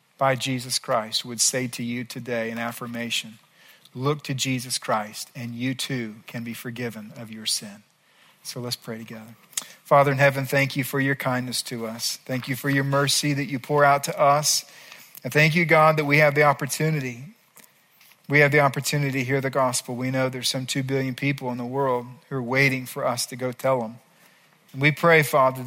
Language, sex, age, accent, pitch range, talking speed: English, male, 40-59, American, 125-150 Hz, 205 wpm